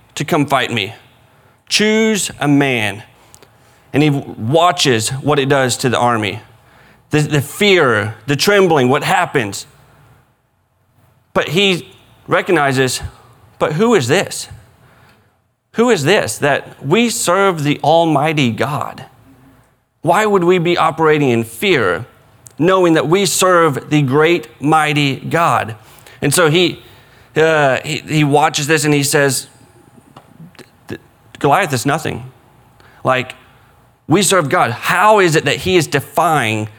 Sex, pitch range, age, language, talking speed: male, 125-155 Hz, 30-49, English, 130 wpm